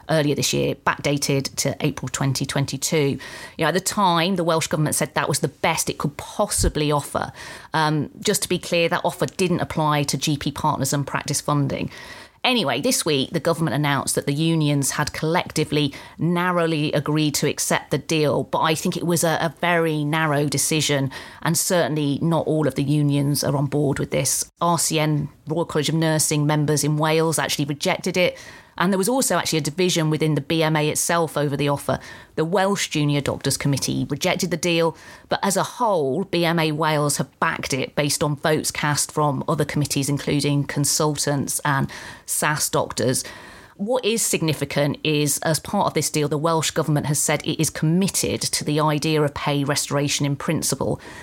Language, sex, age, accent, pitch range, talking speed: English, female, 30-49, British, 145-165 Hz, 185 wpm